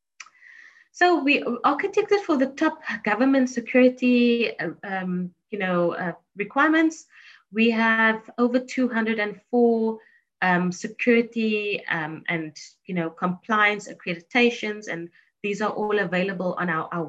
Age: 30-49